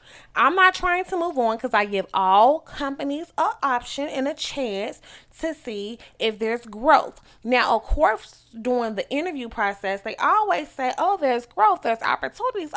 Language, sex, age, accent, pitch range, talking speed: English, female, 20-39, American, 220-280 Hz, 170 wpm